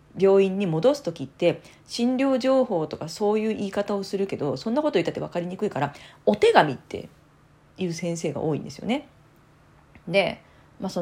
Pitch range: 155-215 Hz